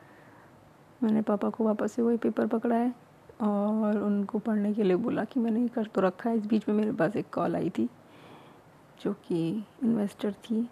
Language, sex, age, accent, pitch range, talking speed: Hindi, female, 20-39, native, 205-230 Hz, 190 wpm